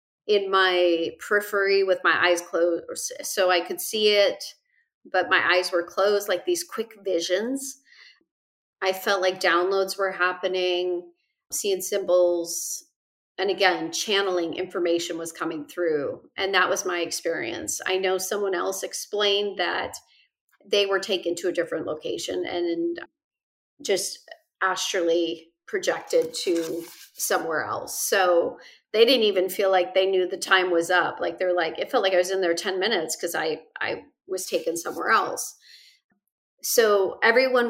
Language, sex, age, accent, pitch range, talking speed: English, female, 30-49, American, 180-215 Hz, 150 wpm